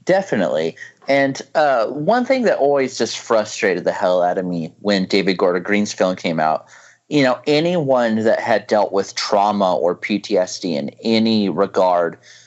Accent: American